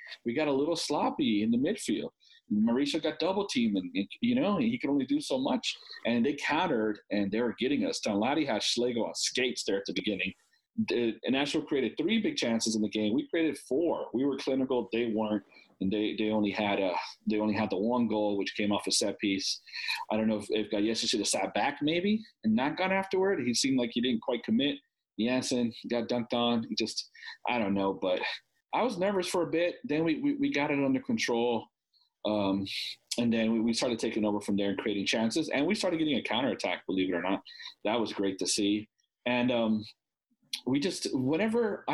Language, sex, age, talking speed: English, male, 40-59, 220 wpm